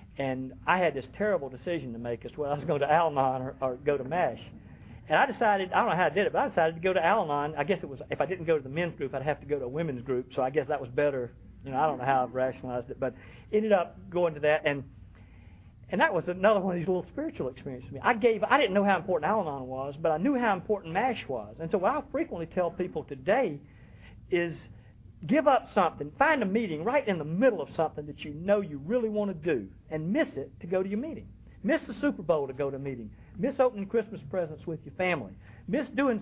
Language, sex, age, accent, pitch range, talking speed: English, male, 50-69, American, 135-200 Hz, 275 wpm